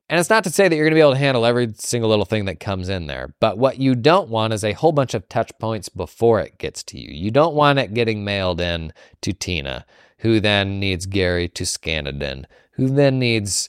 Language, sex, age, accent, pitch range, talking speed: English, male, 20-39, American, 90-120 Hz, 255 wpm